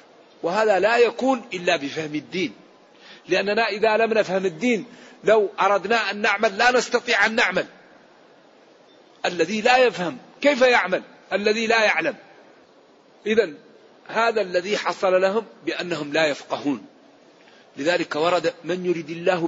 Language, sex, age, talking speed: Arabic, male, 50-69, 125 wpm